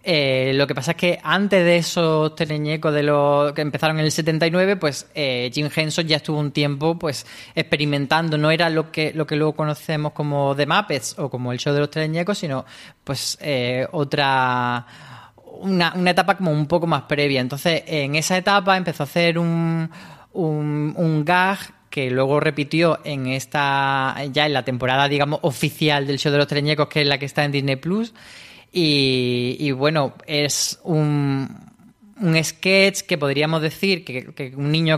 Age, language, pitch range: 20-39, Spanish, 140-170 Hz